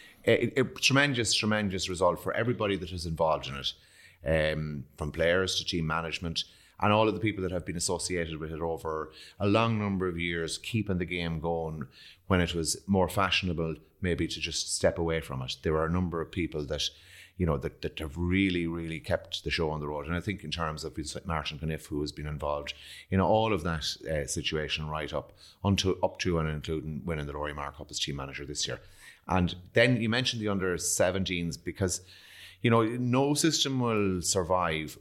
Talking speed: 200 wpm